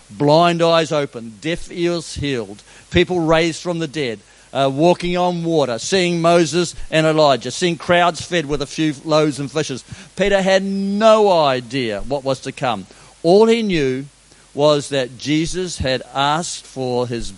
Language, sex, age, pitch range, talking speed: English, male, 50-69, 130-165 Hz, 160 wpm